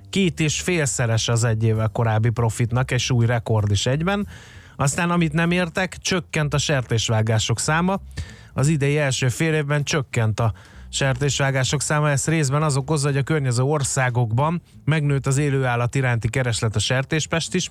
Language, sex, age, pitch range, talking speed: Hungarian, male, 20-39, 115-155 Hz, 155 wpm